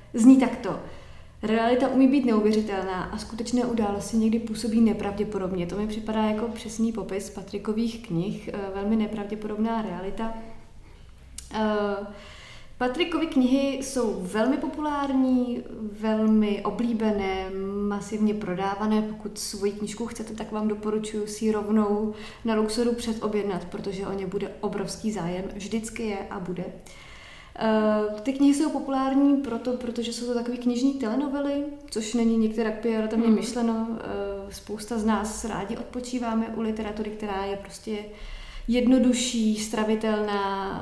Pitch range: 205-235 Hz